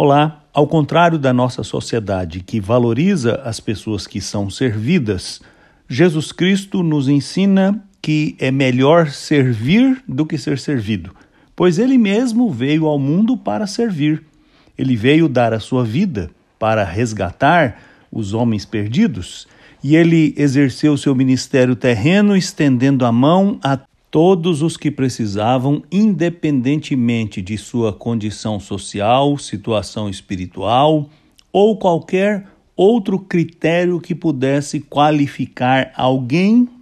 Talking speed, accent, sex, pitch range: 120 wpm, Brazilian, male, 120-165 Hz